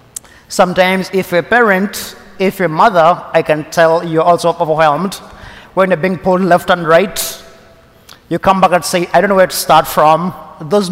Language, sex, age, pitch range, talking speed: English, male, 30-49, 170-210 Hz, 190 wpm